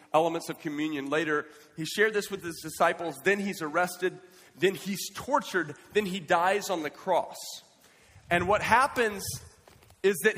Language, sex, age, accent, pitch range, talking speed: English, male, 40-59, American, 155-200 Hz, 155 wpm